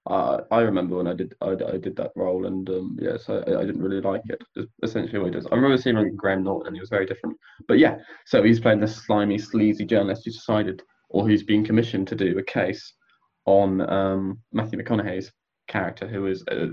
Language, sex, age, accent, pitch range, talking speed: English, male, 20-39, British, 95-110 Hz, 220 wpm